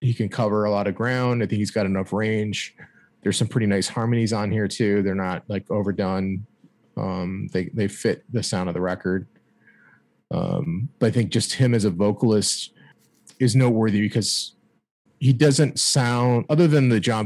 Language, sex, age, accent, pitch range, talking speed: English, male, 30-49, American, 100-120 Hz, 185 wpm